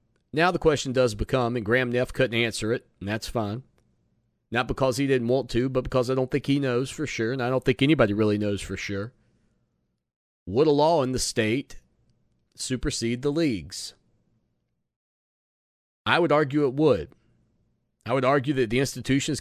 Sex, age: male, 30-49